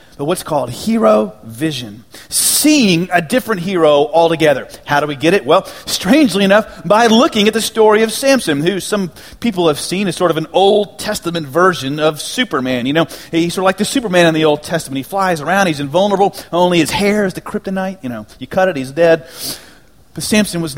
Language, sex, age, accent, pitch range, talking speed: English, male, 30-49, American, 150-210 Hz, 210 wpm